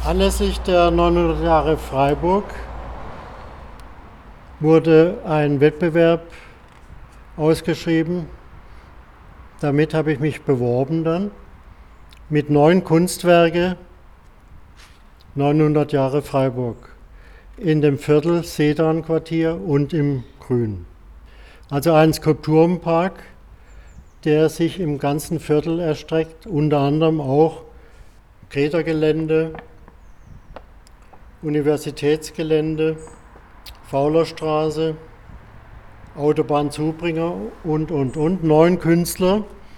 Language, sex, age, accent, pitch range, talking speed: German, male, 50-69, German, 125-165 Hz, 75 wpm